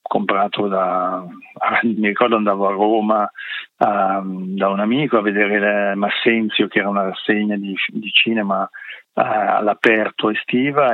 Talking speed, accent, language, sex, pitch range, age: 130 wpm, native, Italian, male, 100-115 Hz, 50-69